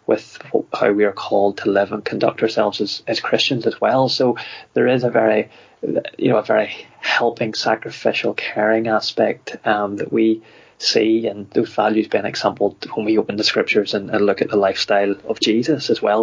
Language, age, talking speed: English, 20-39, 190 wpm